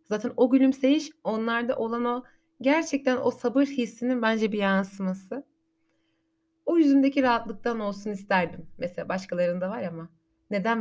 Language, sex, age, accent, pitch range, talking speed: Turkish, female, 30-49, native, 190-255 Hz, 130 wpm